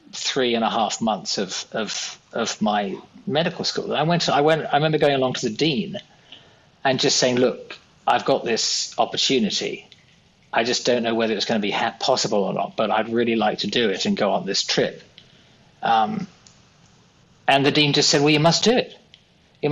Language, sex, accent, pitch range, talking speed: English, male, British, 120-160 Hz, 205 wpm